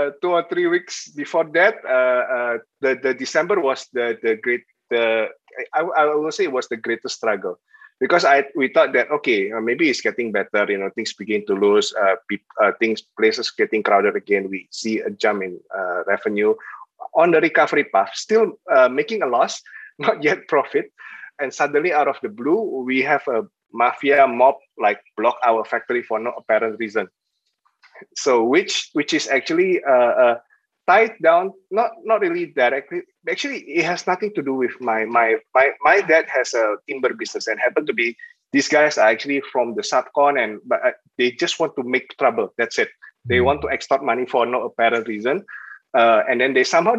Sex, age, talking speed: male, 20-39, 195 wpm